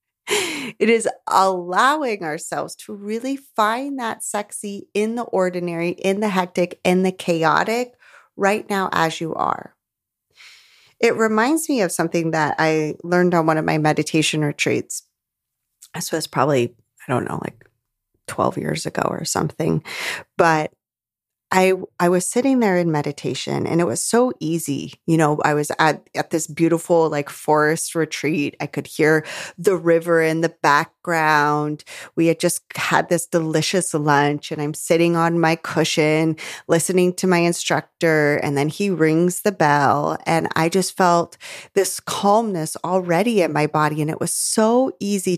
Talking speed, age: 155 wpm, 30-49